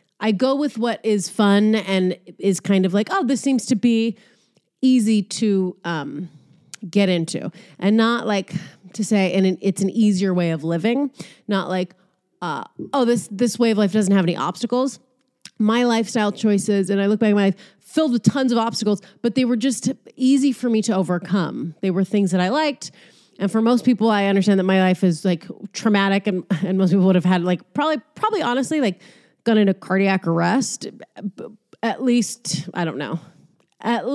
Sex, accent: female, American